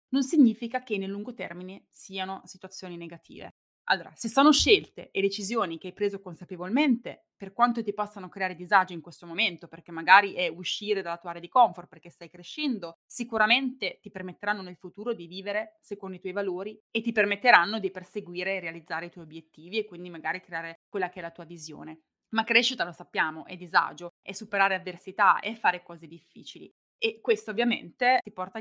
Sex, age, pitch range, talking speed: female, 20-39, 180-220 Hz, 185 wpm